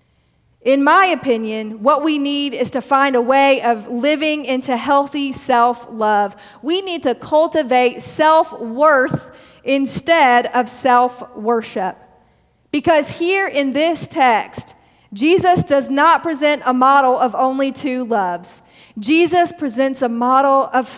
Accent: American